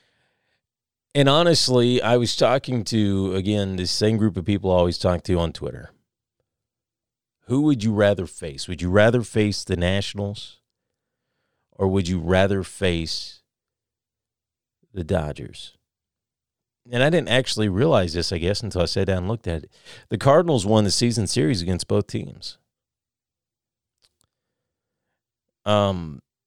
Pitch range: 90-115 Hz